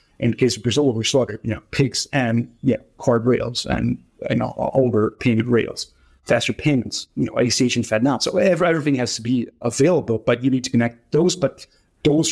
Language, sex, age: English, male, 30-49